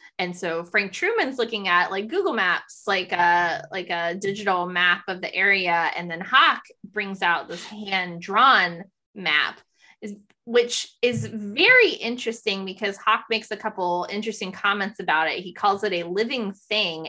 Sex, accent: female, American